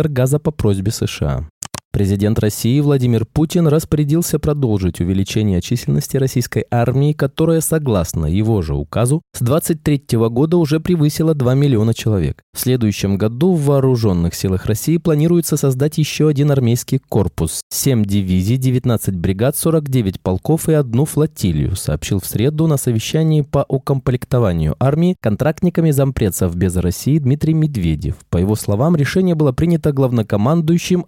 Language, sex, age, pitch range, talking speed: Russian, male, 20-39, 100-155 Hz, 135 wpm